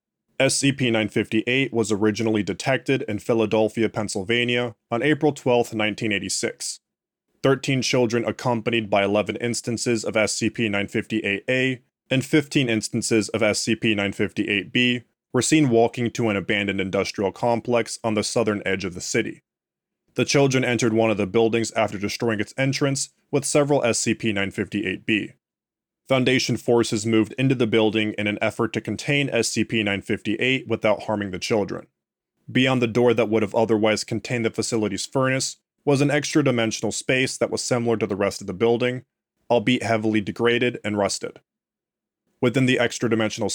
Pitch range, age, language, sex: 110-125 Hz, 20-39, English, male